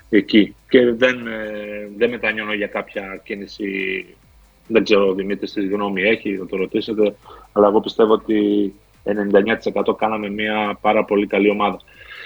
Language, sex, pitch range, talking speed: Greek, male, 105-135 Hz, 135 wpm